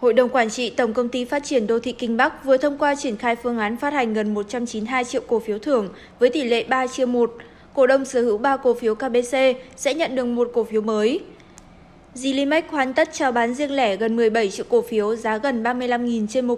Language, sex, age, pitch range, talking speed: Vietnamese, female, 20-39, 240-285 Hz, 240 wpm